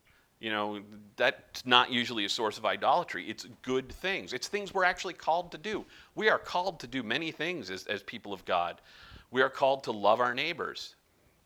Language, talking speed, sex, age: English, 200 wpm, male, 40-59